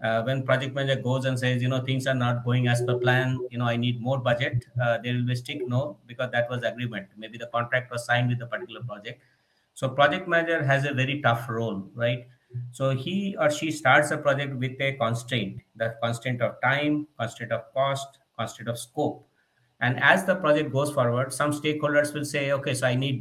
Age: 50-69